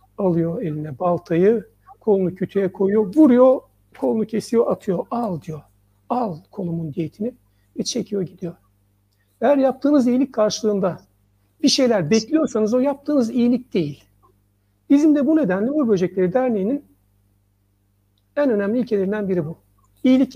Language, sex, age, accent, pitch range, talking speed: Turkish, male, 60-79, native, 160-250 Hz, 125 wpm